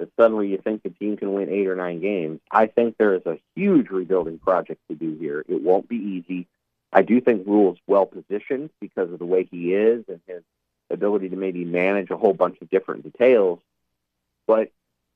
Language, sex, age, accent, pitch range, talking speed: English, male, 40-59, American, 90-150 Hz, 200 wpm